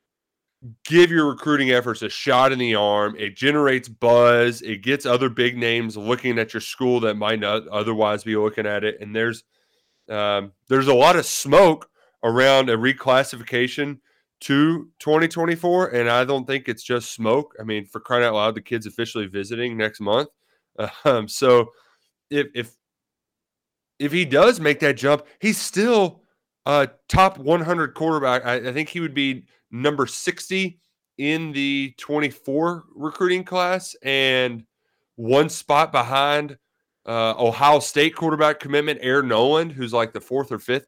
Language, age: English, 30-49